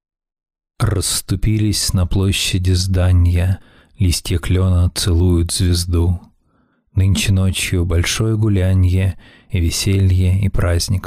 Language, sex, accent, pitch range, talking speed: Russian, male, native, 90-105 Hz, 85 wpm